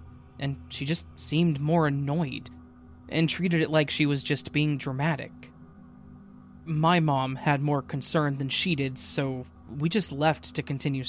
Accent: American